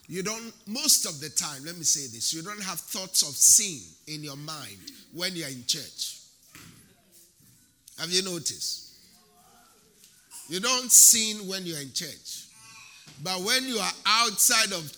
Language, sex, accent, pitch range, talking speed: English, male, Nigerian, 140-195 Hz, 155 wpm